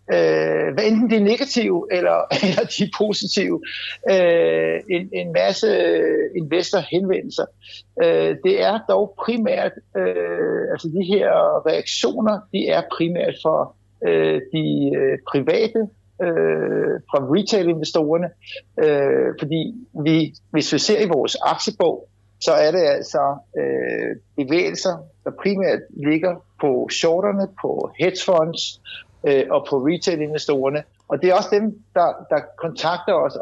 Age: 60-79